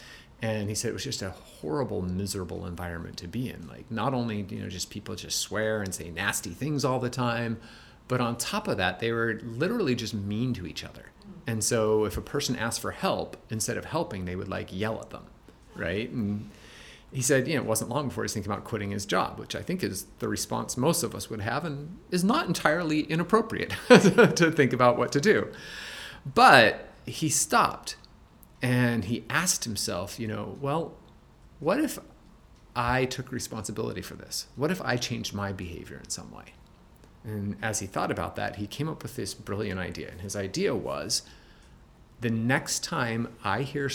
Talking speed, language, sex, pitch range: 200 wpm, English, male, 105-130 Hz